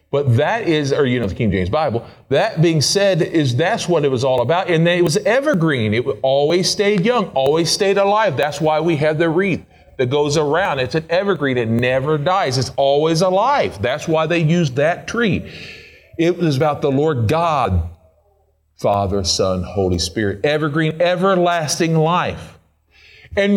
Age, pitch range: 40-59, 115-170 Hz